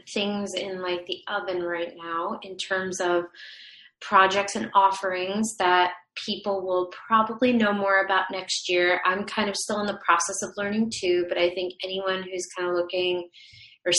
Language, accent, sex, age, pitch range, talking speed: English, American, female, 30-49, 180-215 Hz, 175 wpm